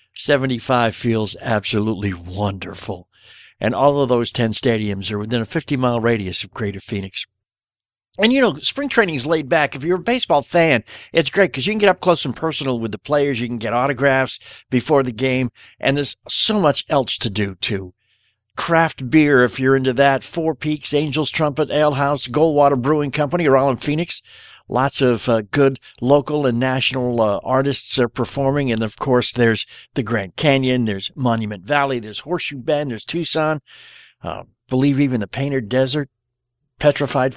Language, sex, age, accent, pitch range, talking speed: English, male, 60-79, American, 120-150 Hz, 180 wpm